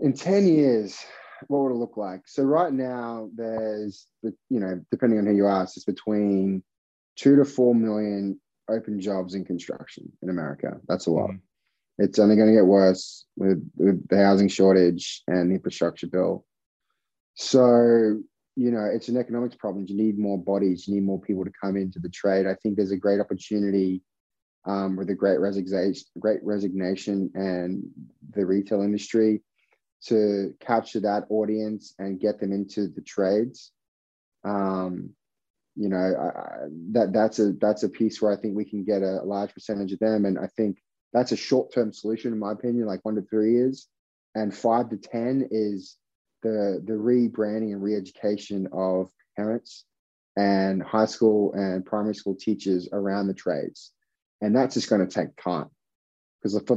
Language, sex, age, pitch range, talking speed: English, male, 20-39, 95-110 Hz, 175 wpm